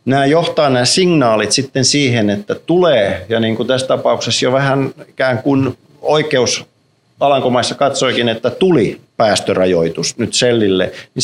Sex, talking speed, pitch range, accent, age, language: male, 140 wpm, 95-130 Hz, native, 50-69, Finnish